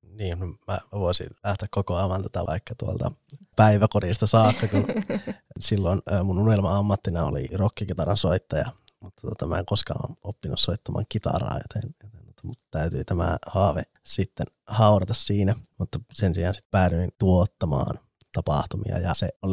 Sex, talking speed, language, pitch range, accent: male, 140 wpm, Finnish, 90-110 Hz, native